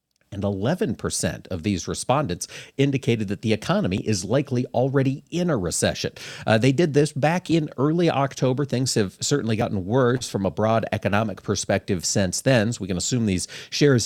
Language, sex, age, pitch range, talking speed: English, male, 40-59, 110-145 Hz, 175 wpm